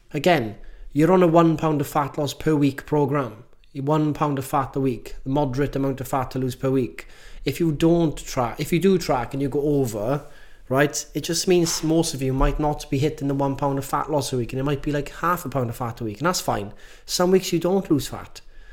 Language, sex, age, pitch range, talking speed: English, male, 30-49, 130-155 Hz, 255 wpm